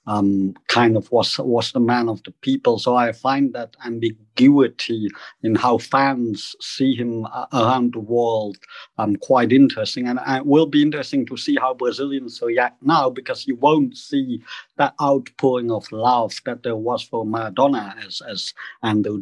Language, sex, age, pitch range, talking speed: English, male, 50-69, 115-145 Hz, 170 wpm